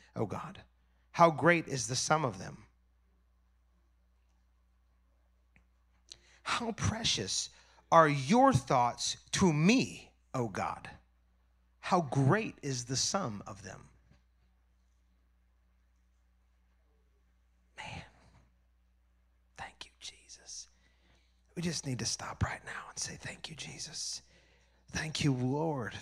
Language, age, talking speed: English, 30-49, 105 wpm